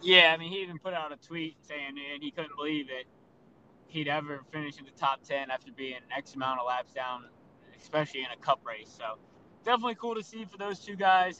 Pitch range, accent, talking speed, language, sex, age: 150-195 Hz, American, 230 wpm, English, male, 20-39